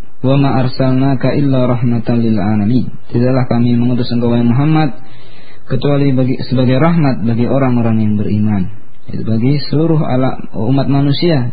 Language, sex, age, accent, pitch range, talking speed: Indonesian, male, 20-39, native, 120-140 Hz, 120 wpm